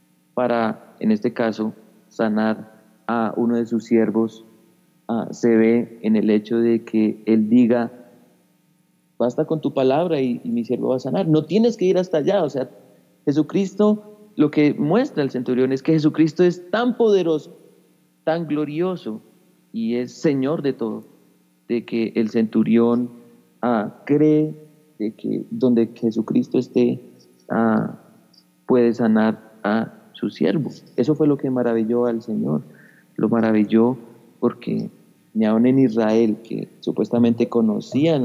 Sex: male